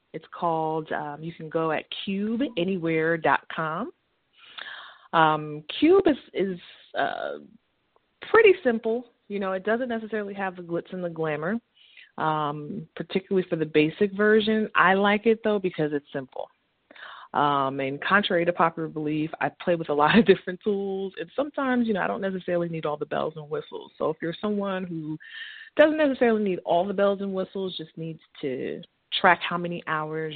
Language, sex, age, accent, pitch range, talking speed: English, female, 30-49, American, 150-195 Hz, 170 wpm